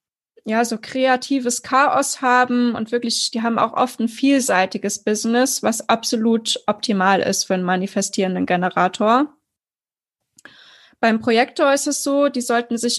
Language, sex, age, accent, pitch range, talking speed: German, female, 20-39, German, 225-260 Hz, 140 wpm